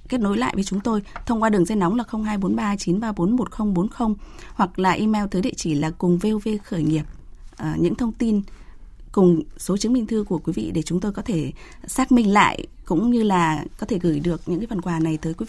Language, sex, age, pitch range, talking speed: Vietnamese, female, 20-39, 175-230 Hz, 225 wpm